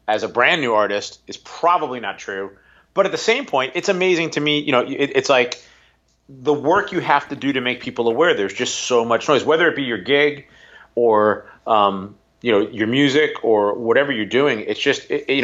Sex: male